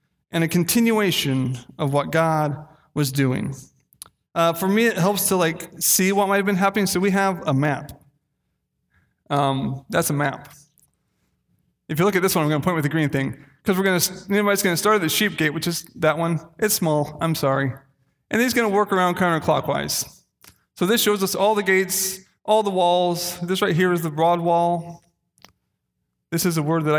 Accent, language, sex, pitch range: American, English, male, 155-190 Hz